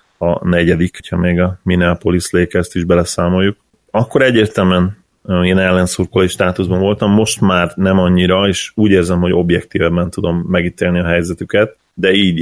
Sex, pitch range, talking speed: male, 90-100 Hz, 150 wpm